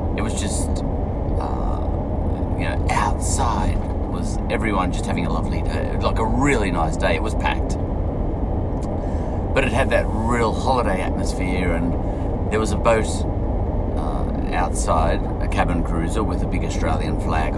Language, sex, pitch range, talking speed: English, male, 80-100 Hz, 150 wpm